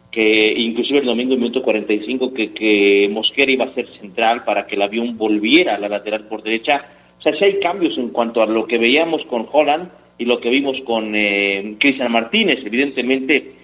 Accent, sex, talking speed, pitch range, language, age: Mexican, male, 210 wpm, 115-155 Hz, Spanish, 40-59